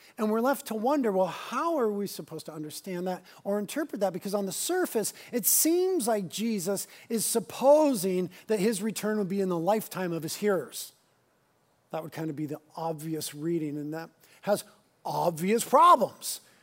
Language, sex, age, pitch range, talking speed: English, male, 40-59, 175-225 Hz, 180 wpm